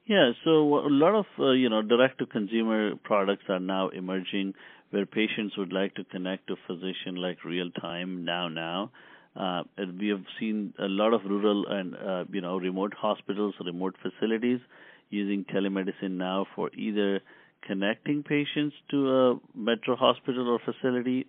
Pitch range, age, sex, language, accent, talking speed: 95-110 Hz, 50-69, male, English, Indian, 160 wpm